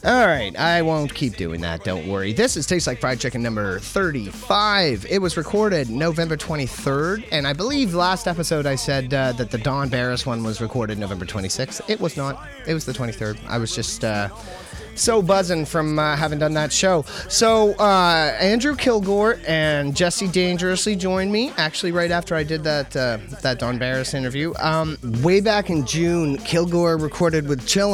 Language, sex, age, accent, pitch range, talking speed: English, male, 30-49, American, 115-160 Hz, 185 wpm